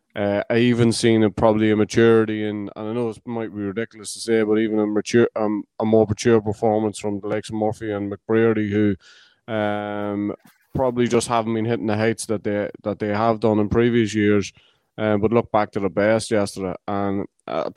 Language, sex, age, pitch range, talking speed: English, male, 20-39, 105-115 Hz, 205 wpm